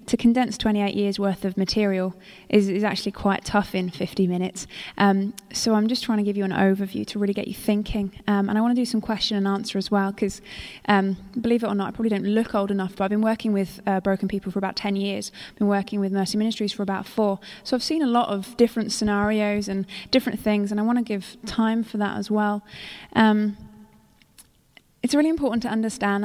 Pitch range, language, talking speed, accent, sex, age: 200-225 Hz, English, 230 wpm, British, female, 20-39